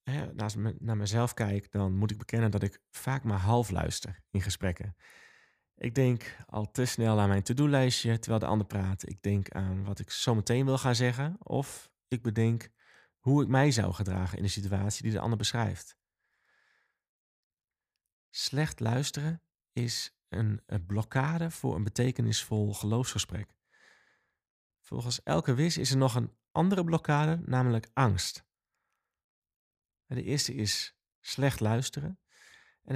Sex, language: male, Dutch